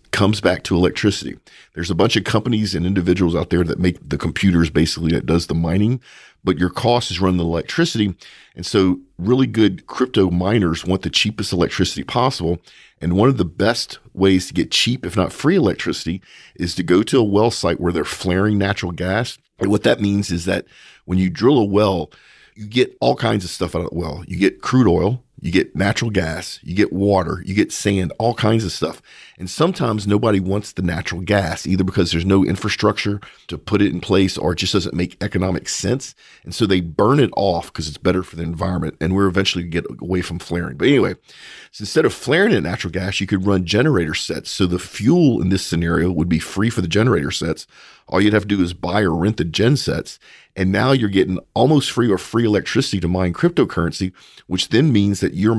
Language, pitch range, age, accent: English, 90-105 Hz, 40-59, American